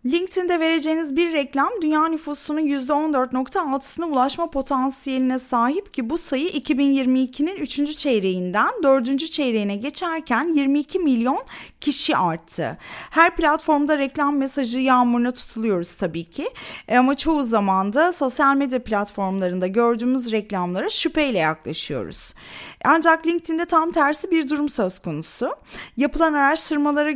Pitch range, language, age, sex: 235-300 Hz, Turkish, 30-49, female